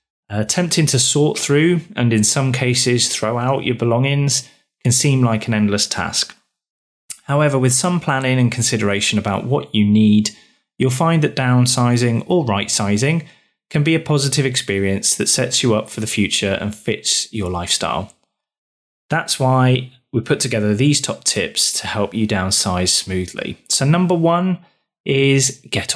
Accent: British